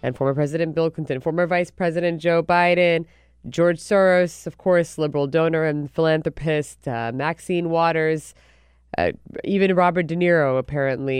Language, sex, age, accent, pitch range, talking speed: English, female, 20-39, American, 145-180 Hz, 145 wpm